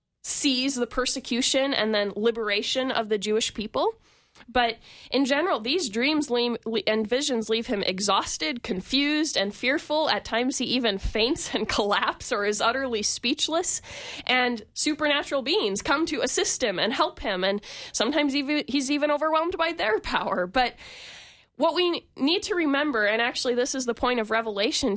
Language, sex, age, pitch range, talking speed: English, female, 20-39, 220-295 Hz, 160 wpm